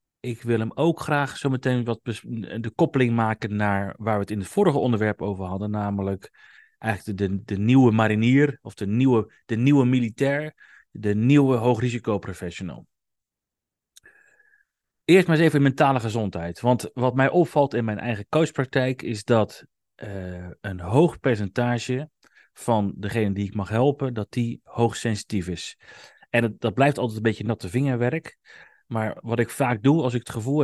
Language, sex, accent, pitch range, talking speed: Dutch, male, Dutch, 105-130 Hz, 165 wpm